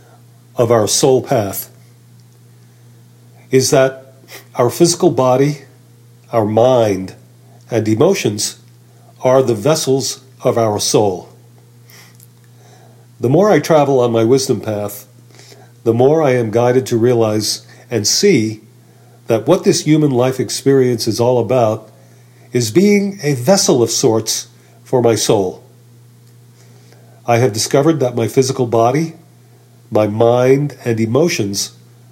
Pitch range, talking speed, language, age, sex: 115-135 Hz, 120 wpm, English, 50-69, male